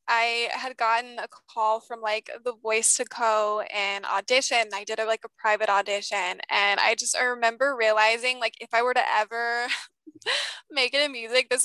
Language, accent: English, American